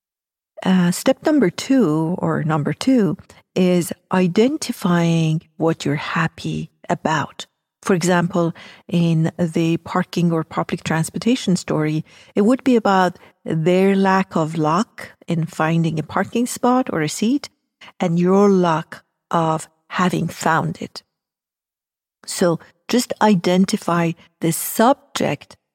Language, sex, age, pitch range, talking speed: English, female, 50-69, 160-195 Hz, 115 wpm